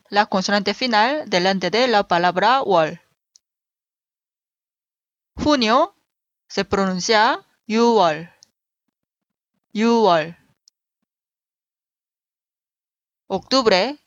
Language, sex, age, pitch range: Korean, female, 20-39, 190-245 Hz